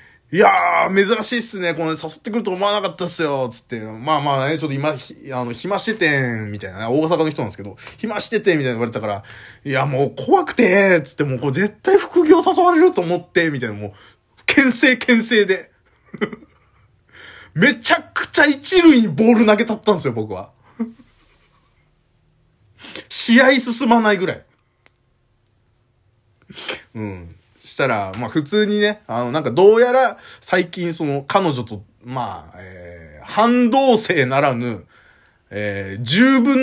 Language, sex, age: Japanese, male, 20-39